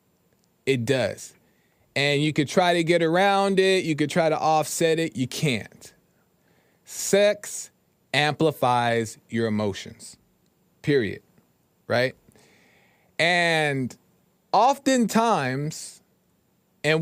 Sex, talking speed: male, 95 wpm